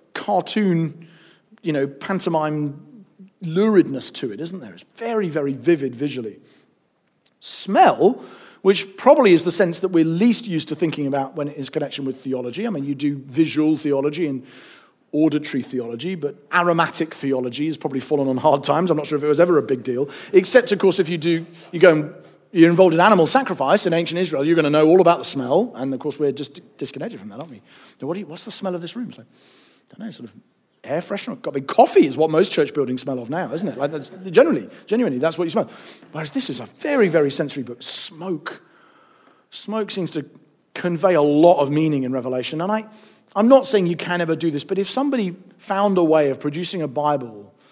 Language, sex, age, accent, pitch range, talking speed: English, male, 40-59, British, 145-190 Hz, 210 wpm